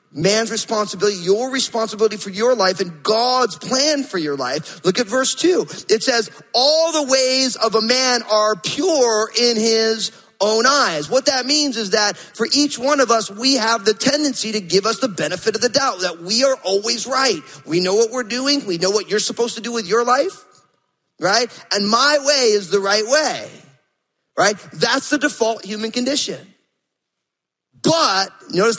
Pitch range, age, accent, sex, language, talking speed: 205-265 Hz, 30-49, American, male, English, 185 wpm